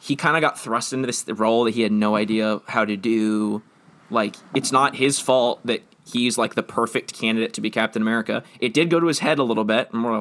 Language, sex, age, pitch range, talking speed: English, male, 20-39, 110-140 Hz, 240 wpm